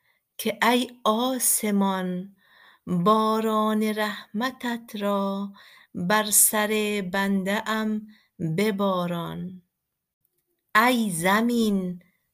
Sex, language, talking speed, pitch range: female, Persian, 65 wpm, 185-220 Hz